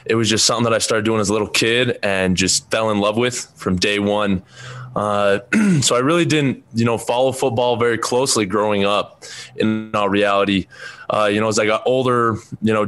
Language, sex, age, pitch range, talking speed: English, male, 20-39, 100-115 Hz, 215 wpm